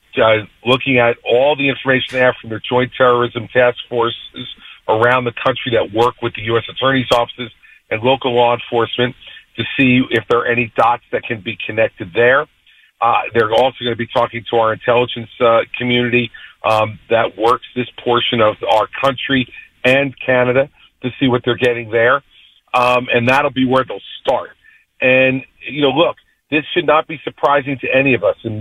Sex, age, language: male, 50-69, English